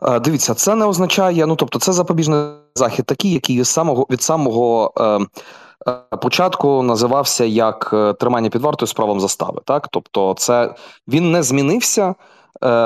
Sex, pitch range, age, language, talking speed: male, 110-135 Hz, 20-39, Ukrainian, 150 wpm